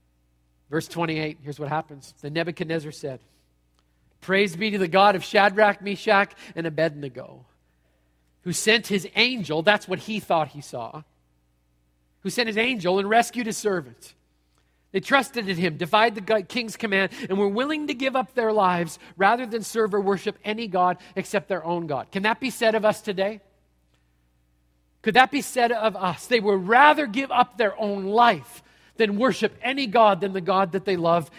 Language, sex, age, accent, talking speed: English, male, 40-59, American, 180 wpm